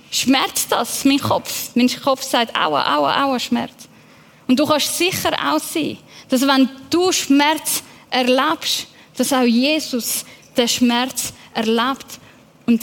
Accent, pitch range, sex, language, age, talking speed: Swiss, 240-280 Hz, female, German, 10-29, 135 wpm